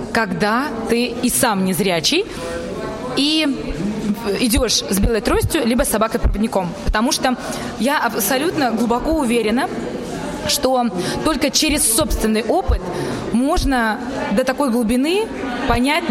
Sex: female